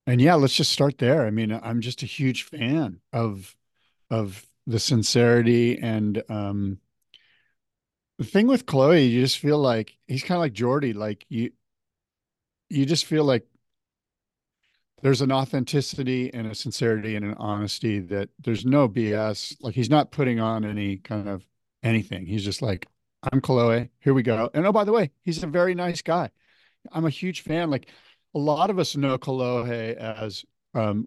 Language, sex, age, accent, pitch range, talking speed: English, male, 40-59, American, 110-135 Hz, 175 wpm